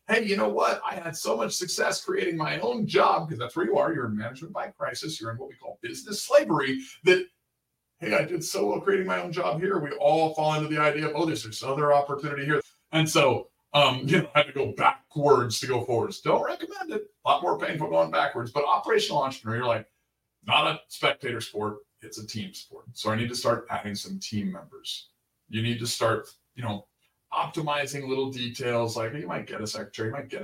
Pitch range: 120-165 Hz